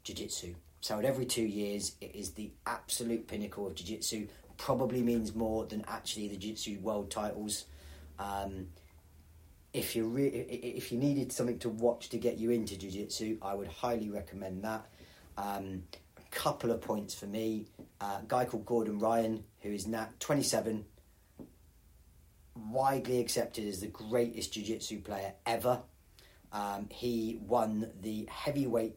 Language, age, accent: English, 30-49, British